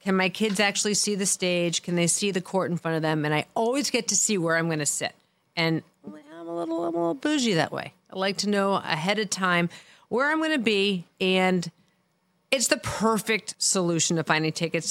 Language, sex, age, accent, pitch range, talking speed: English, female, 40-59, American, 160-210 Hz, 220 wpm